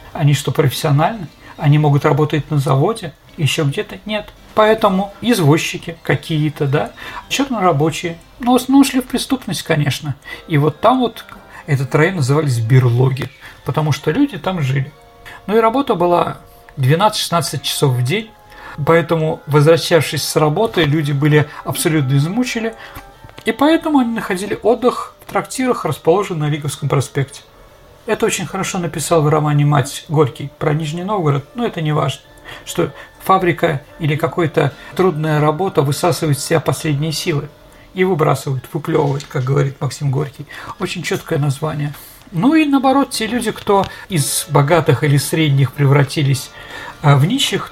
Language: Russian